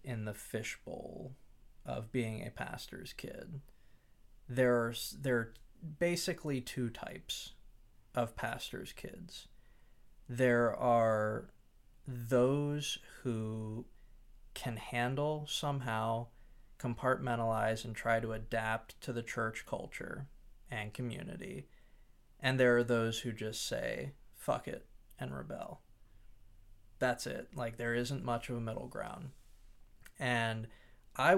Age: 20-39